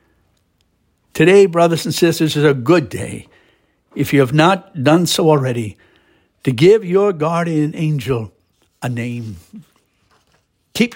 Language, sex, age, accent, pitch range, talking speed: English, male, 60-79, American, 115-165 Hz, 125 wpm